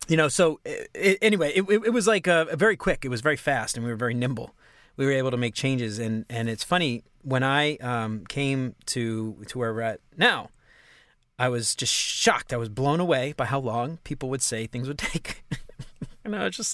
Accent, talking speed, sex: American, 230 wpm, male